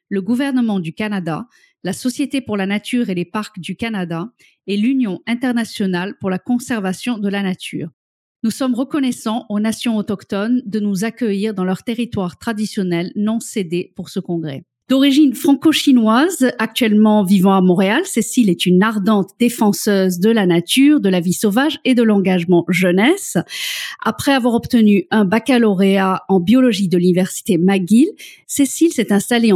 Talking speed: 155 wpm